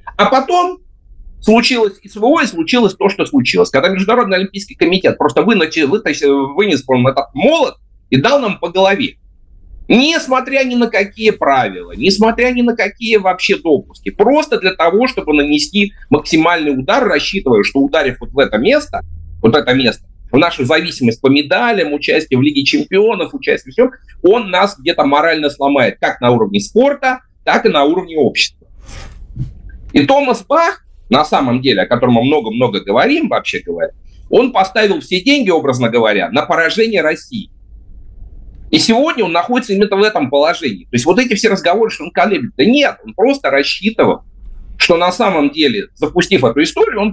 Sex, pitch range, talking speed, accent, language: male, 145-240 Hz, 165 wpm, native, Russian